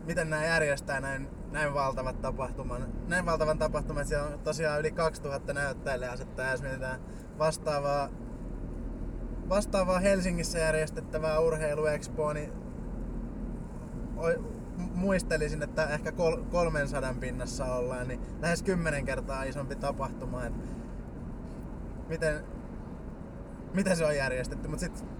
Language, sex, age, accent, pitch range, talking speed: Finnish, male, 20-39, native, 140-165 Hz, 110 wpm